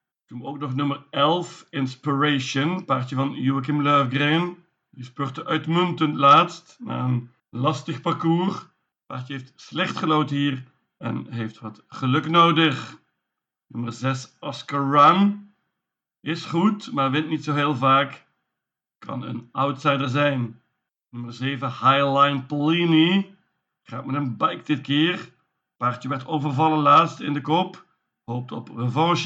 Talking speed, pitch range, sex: 135 wpm, 130-160 Hz, male